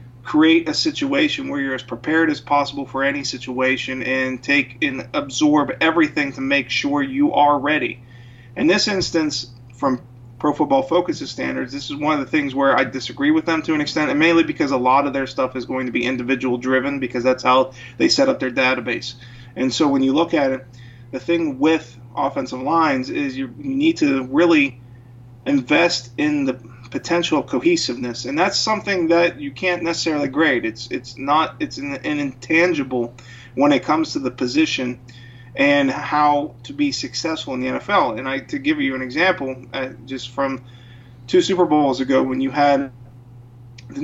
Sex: male